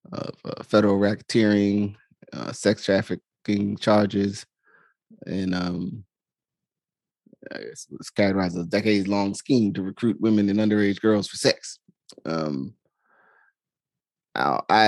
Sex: male